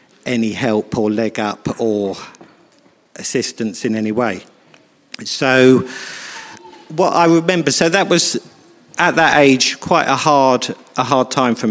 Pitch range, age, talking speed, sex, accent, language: 115-130 Hz, 50-69, 140 wpm, male, British, English